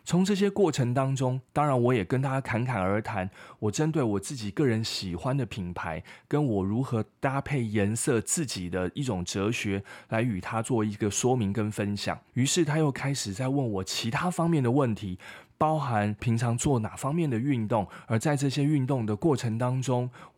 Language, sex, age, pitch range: Chinese, male, 20-39, 105-145 Hz